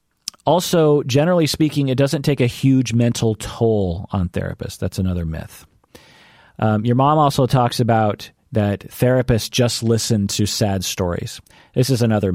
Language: English